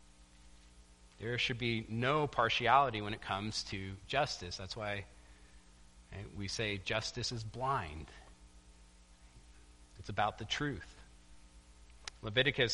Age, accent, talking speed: 40-59, American, 105 wpm